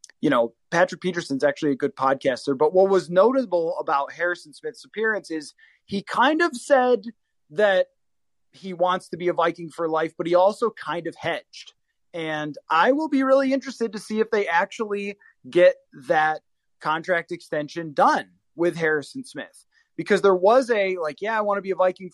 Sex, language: male, English